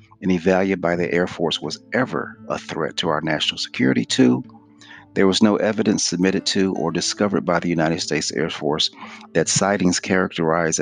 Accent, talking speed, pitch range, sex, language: American, 175 wpm, 85-110 Hz, male, English